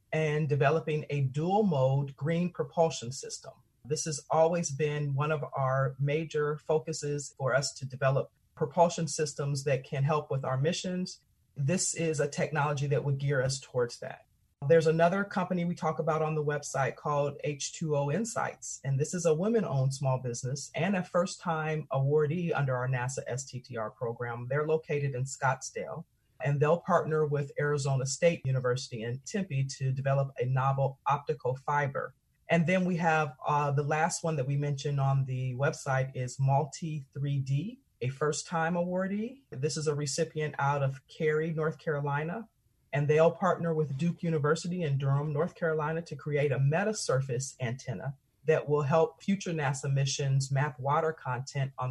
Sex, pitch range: female, 135-160 Hz